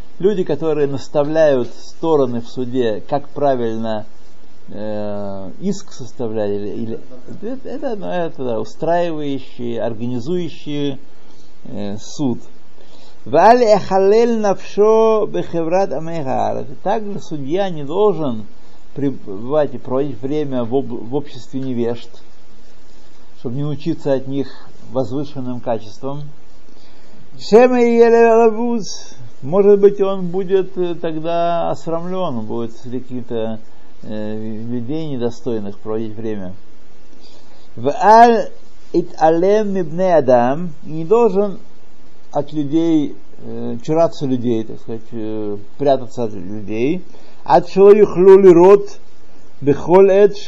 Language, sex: Russian, male